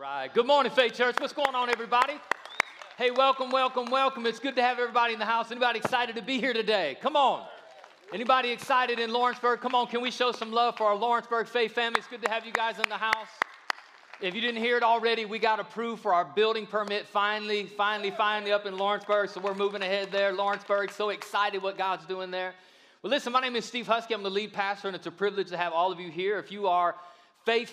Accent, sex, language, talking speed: American, male, English, 240 wpm